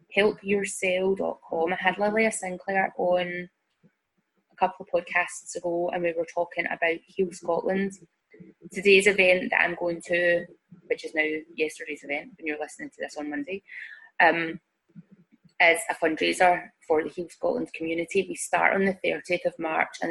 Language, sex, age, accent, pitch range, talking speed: English, female, 20-39, British, 170-195 Hz, 160 wpm